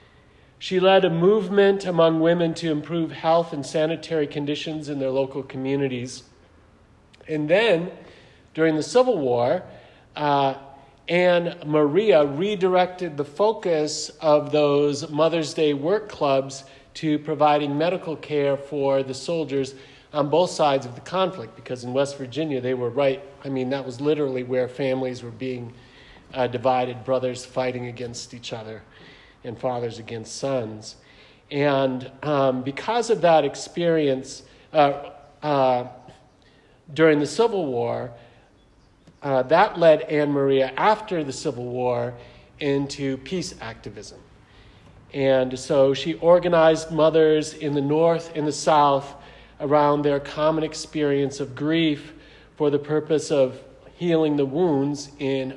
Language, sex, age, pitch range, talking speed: English, male, 40-59, 130-155 Hz, 135 wpm